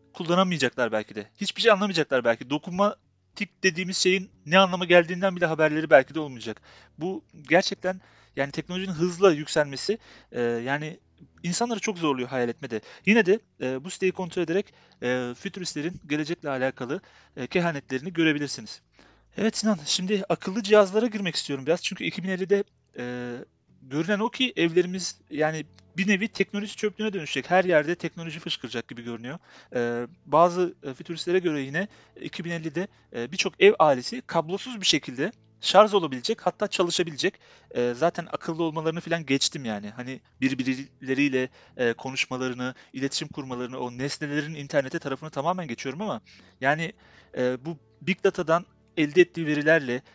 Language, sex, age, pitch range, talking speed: Turkish, male, 40-59, 135-185 Hz, 135 wpm